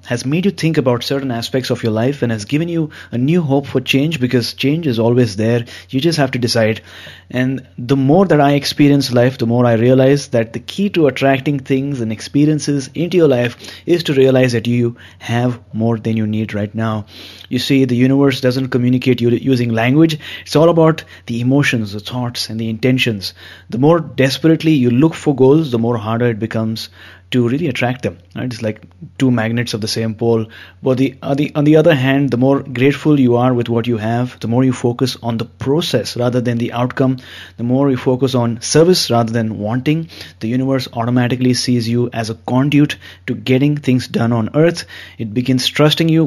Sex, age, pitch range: male, 20-39, 115-140 Hz